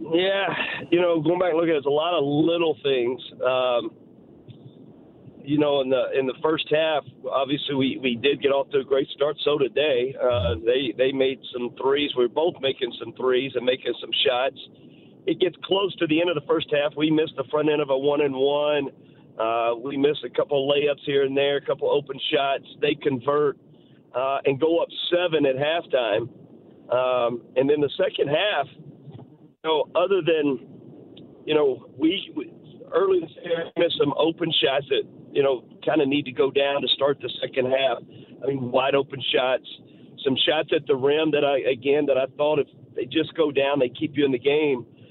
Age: 50-69